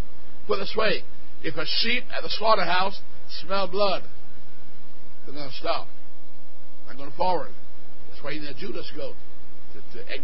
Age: 60-79